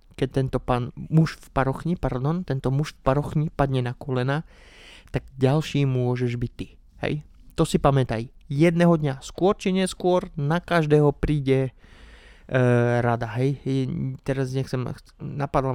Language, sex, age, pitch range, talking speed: Slovak, male, 30-49, 125-150 Hz, 135 wpm